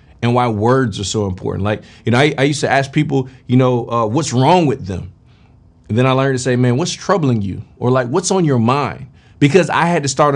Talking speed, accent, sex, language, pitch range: 250 wpm, American, male, English, 120-170 Hz